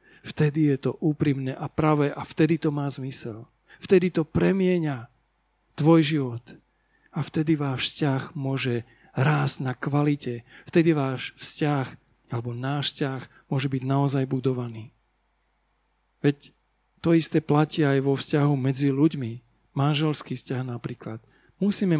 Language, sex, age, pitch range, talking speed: Slovak, male, 40-59, 140-190 Hz, 130 wpm